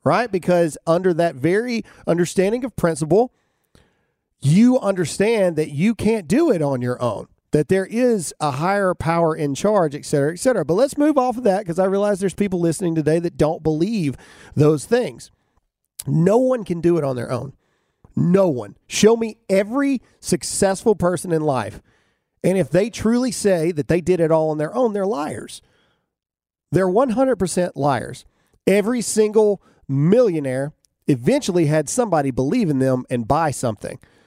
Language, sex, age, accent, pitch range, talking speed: English, male, 40-59, American, 150-210 Hz, 165 wpm